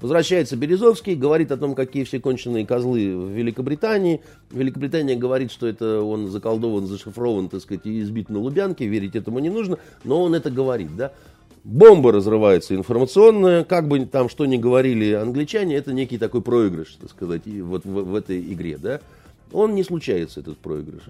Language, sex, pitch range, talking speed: Russian, male, 105-160 Hz, 175 wpm